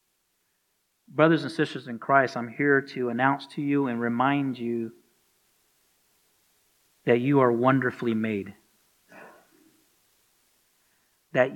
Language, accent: English, American